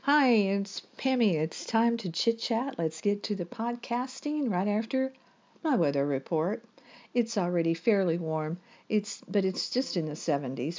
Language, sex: English, female